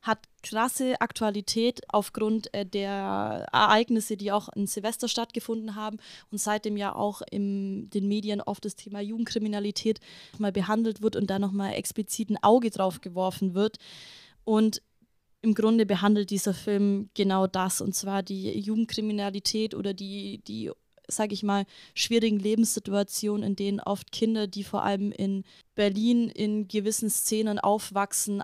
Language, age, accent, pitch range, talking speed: German, 20-39, German, 200-225 Hz, 145 wpm